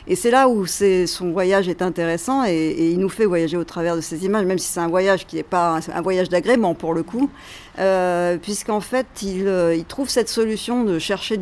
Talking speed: 230 wpm